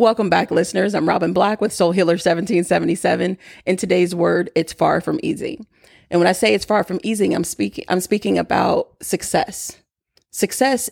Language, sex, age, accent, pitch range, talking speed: English, female, 30-49, American, 185-240 Hz, 175 wpm